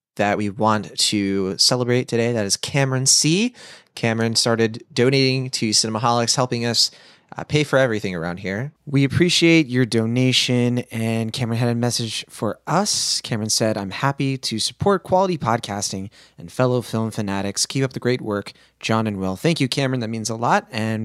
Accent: American